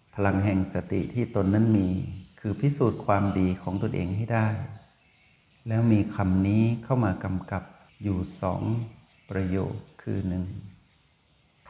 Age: 60-79